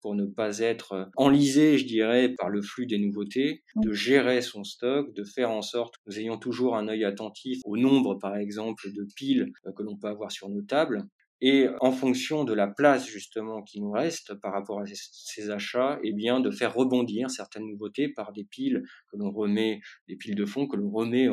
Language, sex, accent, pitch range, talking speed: French, male, French, 105-130 Hz, 215 wpm